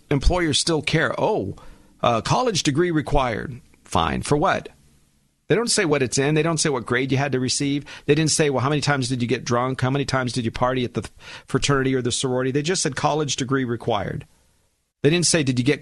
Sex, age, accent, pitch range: male, 50-69, American, 100-145 Hz